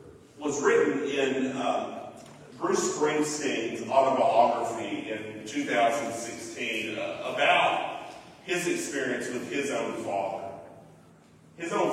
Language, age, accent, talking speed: English, 40-59, American, 95 wpm